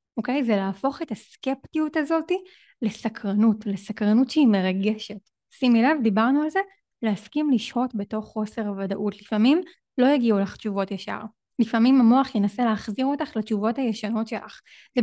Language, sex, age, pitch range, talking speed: Hebrew, female, 20-39, 210-270 Hz, 145 wpm